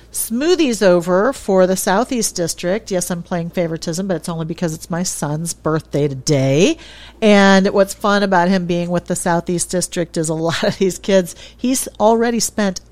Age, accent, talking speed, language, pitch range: 50-69, American, 175 wpm, English, 170-205 Hz